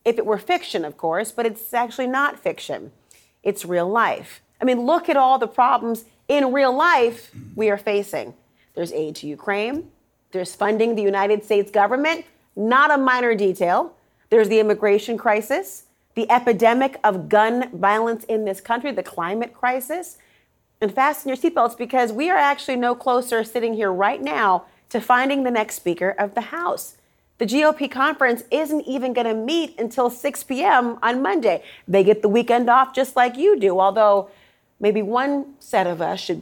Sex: female